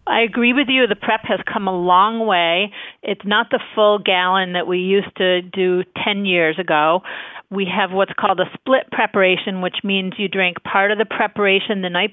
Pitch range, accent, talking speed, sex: 180-210 Hz, American, 205 wpm, female